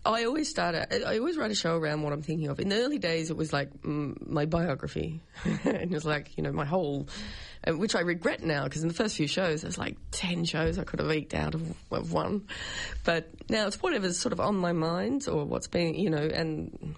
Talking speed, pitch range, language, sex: 245 wpm, 145-190 Hz, English, female